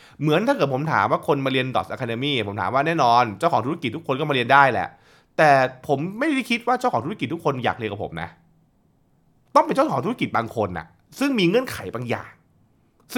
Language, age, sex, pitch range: Thai, 20-39, male, 115-180 Hz